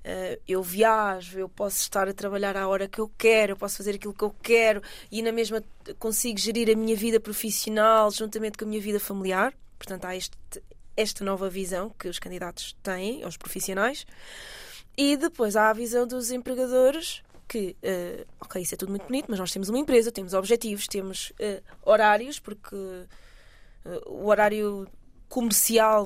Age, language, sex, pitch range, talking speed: 20-39, Portuguese, female, 195-240 Hz, 175 wpm